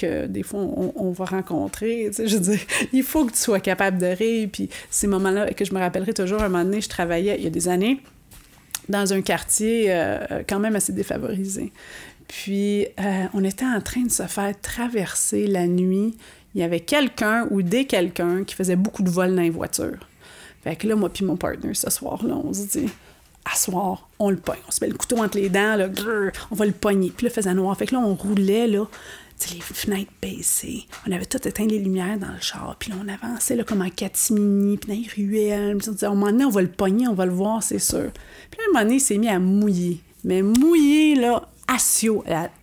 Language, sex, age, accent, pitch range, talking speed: French, female, 30-49, Canadian, 190-225 Hz, 235 wpm